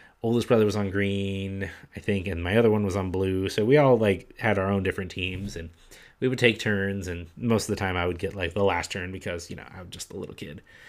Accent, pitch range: American, 95-125 Hz